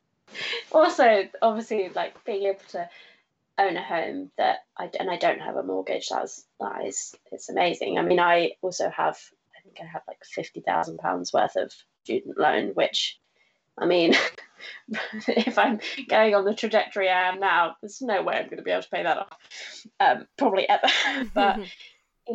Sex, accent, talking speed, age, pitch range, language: female, British, 180 wpm, 20-39, 180-220 Hz, English